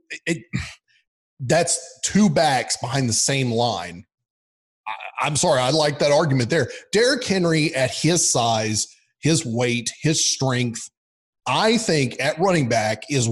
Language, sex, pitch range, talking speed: English, male, 125-180 Hz, 140 wpm